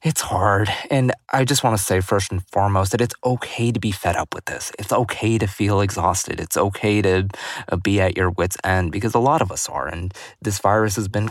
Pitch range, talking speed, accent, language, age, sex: 90-105 Hz, 235 wpm, American, English, 20-39, male